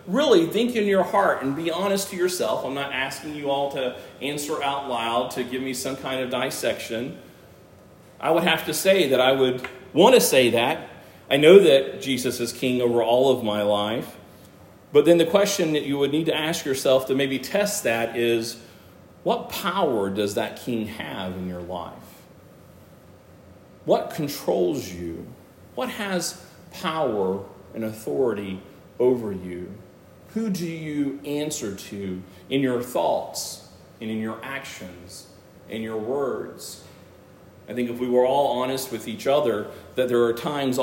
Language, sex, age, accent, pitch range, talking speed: English, male, 40-59, American, 110-140 Hz, 165 wpm